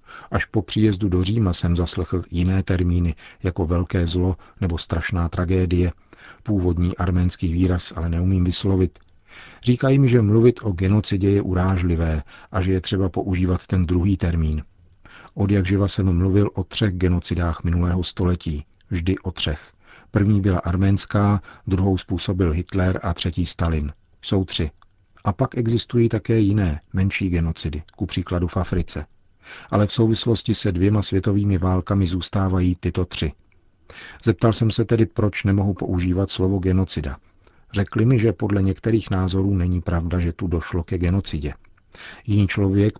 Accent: native